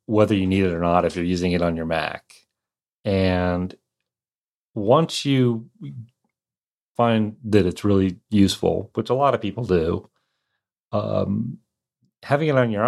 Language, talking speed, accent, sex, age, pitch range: English, 150 wpm, American, male, 30-49, 90-115 Hz